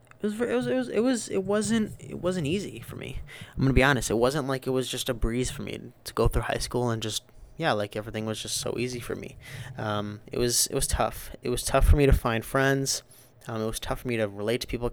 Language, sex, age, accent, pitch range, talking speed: English, male, 20-39, American, 115-135 Hz, 270 wpm